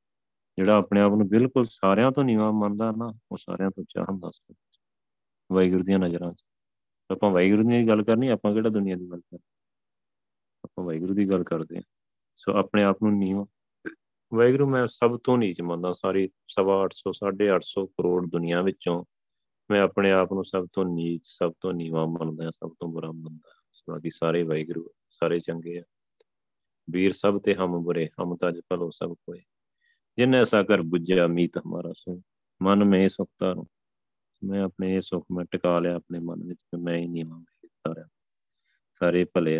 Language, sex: Punjabi, male